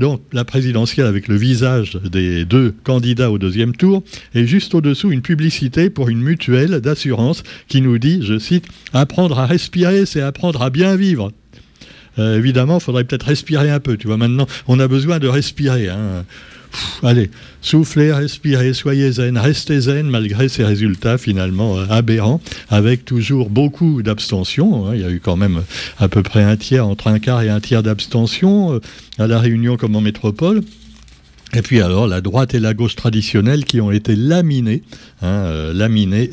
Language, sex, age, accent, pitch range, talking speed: French, male, 60-79, French, 105-140 Hz, 180 wpm